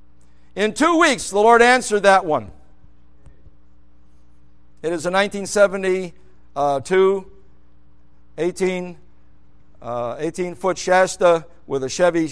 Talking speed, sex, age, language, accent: 95 wpm, male, 60-79, English, American